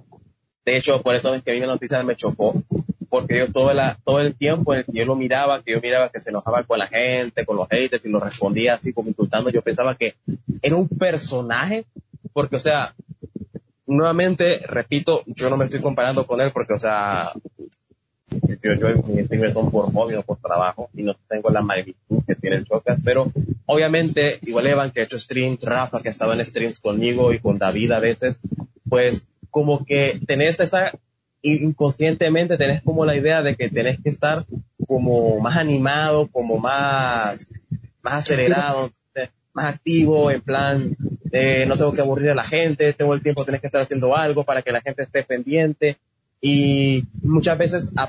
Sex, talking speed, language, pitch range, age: male, 190 wpm, Spanish, 120-150 Hz, 30-49